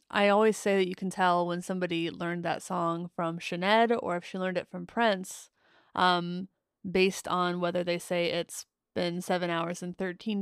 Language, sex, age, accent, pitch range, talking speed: English, female, 20-39, American, 185-220 Hz, 190 wpm